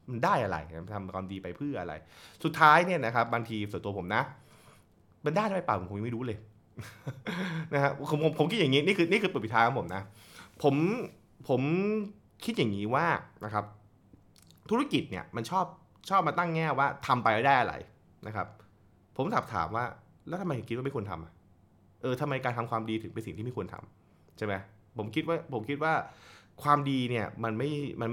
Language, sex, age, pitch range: Thai, male, 20-39, 95-130 Hz